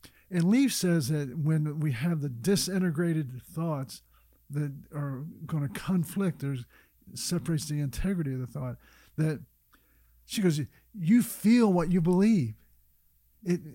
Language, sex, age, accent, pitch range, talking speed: English, male, 50-69, American, 145-185 Hz, 135 wpm